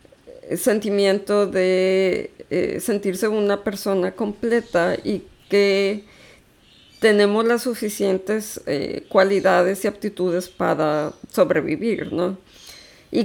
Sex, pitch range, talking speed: female, 180-210 Hz, 90 wpm